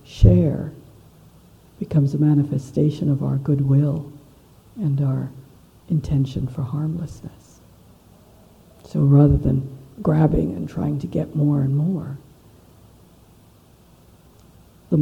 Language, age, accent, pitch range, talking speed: English, 60-79, American, 140-165 Hz, 95 wpm